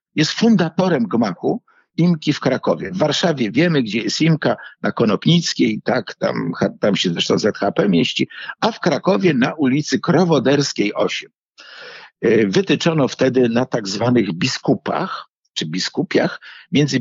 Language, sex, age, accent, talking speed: Polish, male, 50-69, native, 130 wpm